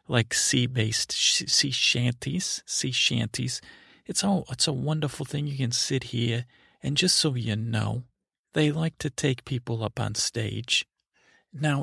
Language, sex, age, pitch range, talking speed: English, male, 40-59, 115-150 Hz, 145 wpm